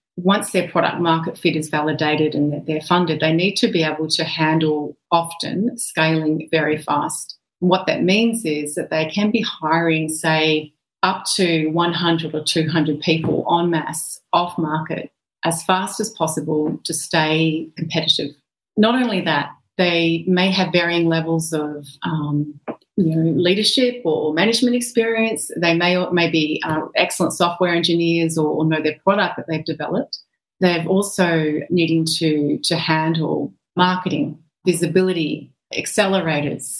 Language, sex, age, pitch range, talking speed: English, female, 30-49, 155-185 Hz, 145 wpm